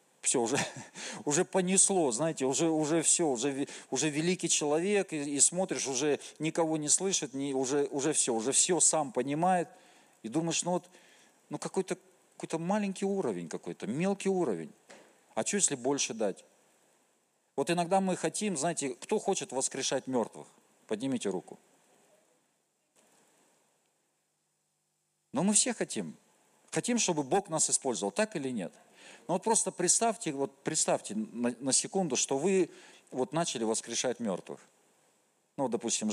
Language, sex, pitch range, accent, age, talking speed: Russian, male, 135-180 Hz, native, 50-69, 140 wpm